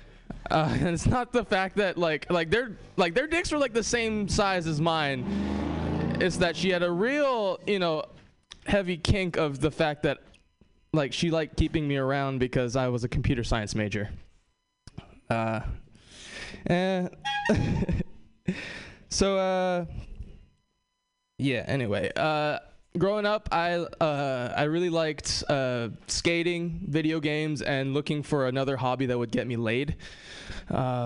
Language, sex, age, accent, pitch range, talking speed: English, male, 20-39, American, 130-175 Hz, 145 wpm